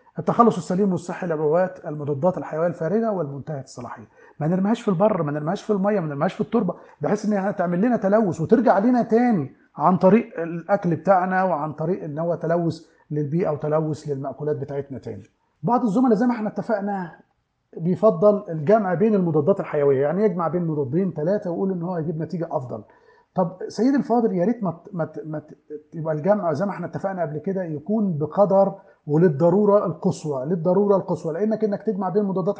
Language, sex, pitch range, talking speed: Arabic, male, 155-205 Hz, 170 wpm